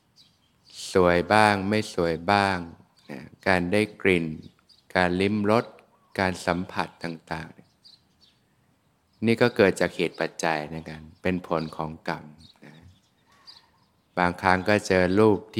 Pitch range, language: 85-100 Hz, Thai